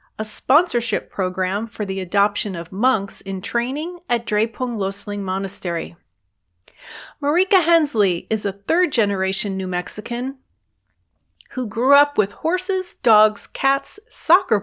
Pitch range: 195-275 Hz